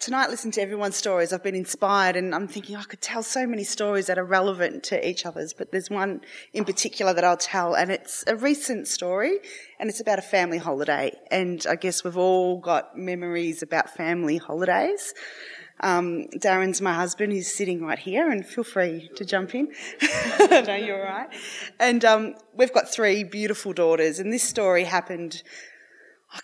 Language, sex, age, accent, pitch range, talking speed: English, female, 20-39, Australian, 180-215 Hz, 185 wpm